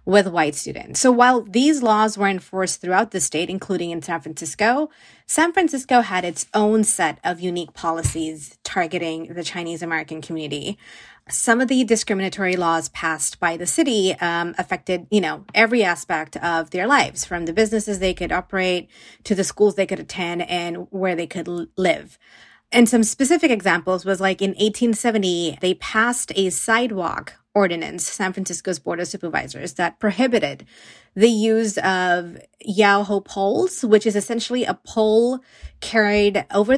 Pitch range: 175-215 Hz